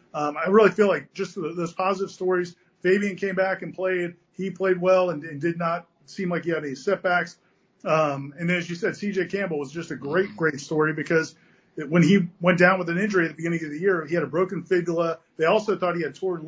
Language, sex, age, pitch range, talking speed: English, male, 40-59, 160-185 Hz, 235 wpm